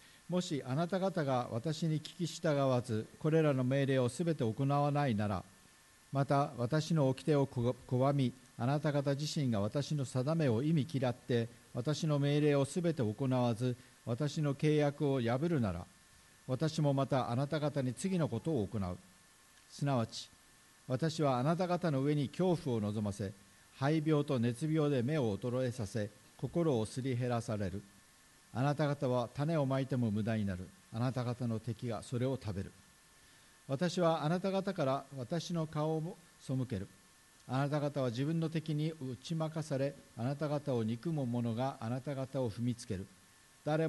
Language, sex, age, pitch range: Japanese, male, 50-69, 120-150 Hz